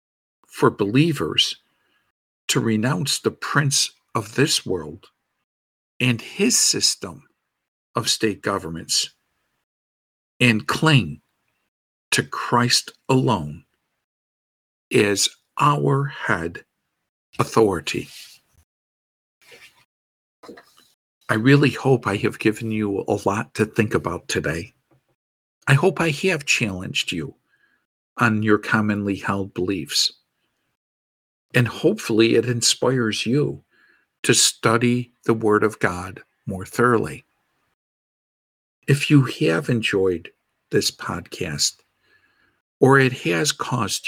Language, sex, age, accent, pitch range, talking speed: English, male, 50-69, American, 95-135 Hz, 95 wpm